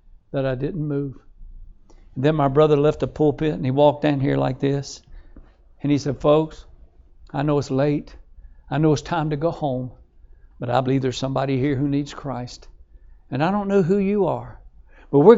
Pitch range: 125-155 Hz